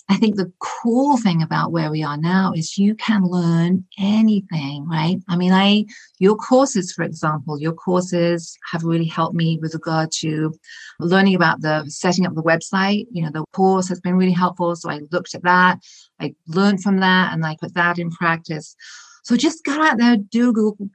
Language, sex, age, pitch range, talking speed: English, female, 40-59, 160-210 Hz, 200 wpm